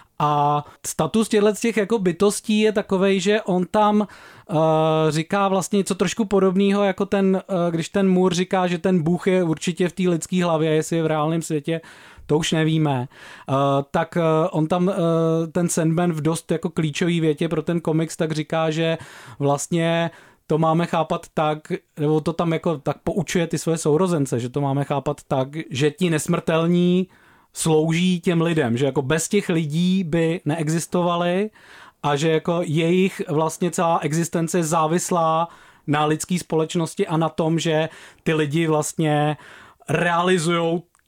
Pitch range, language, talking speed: 150-175 Hz, Czech, 150 wpm